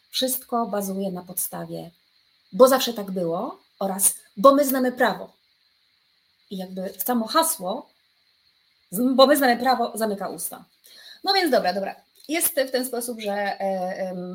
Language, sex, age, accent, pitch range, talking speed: Polish, female, 30-49, native, 195-255 Hz, 140 wpm